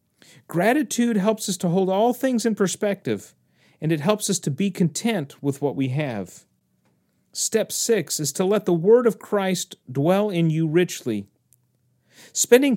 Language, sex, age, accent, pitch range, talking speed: English, male, 40-59, American, 135-195 Hz, 160 wpm